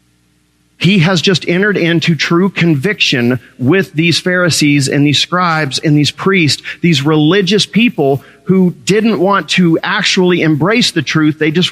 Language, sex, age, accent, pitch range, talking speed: English, male, 40-59, American, 145-195 Hz, 150 wpm